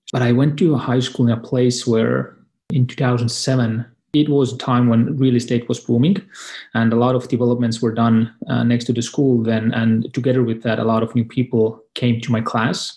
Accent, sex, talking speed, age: Finnish, male, 220 wpm, 30-49